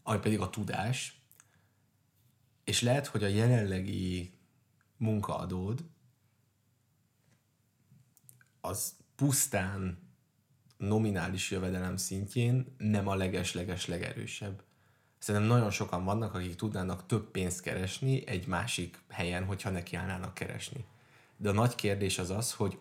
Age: 30-49